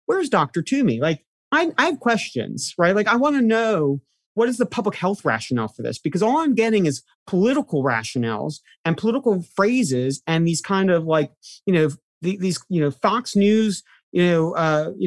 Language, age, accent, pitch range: English, 40-59, American, 150-215 Hz